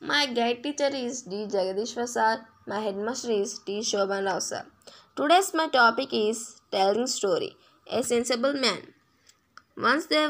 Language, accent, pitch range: Telugu, native, 205-270 Hz